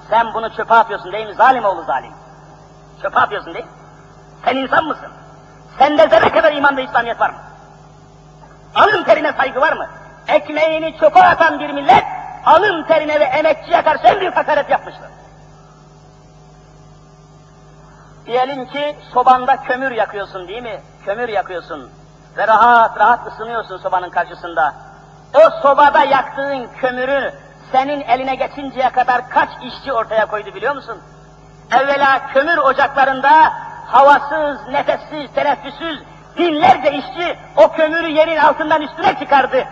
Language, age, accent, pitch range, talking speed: Turkish, 50-69, native, 220-310 Hz, 130 wpm